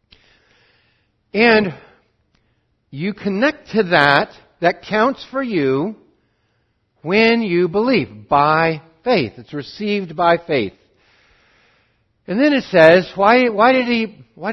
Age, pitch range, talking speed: 60-79, 120-190 Hz, 110 wpm